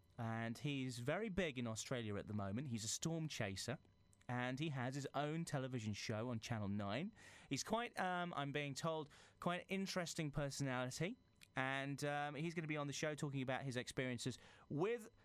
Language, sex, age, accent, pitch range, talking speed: English, male, 30-49, British, 125-200 Hz, 185 wpm